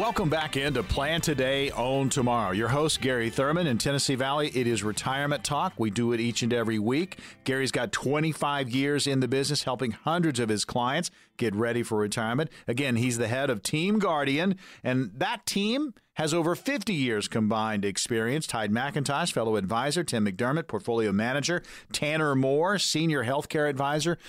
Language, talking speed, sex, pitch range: English, 175 wpm, male, 120-155 Hz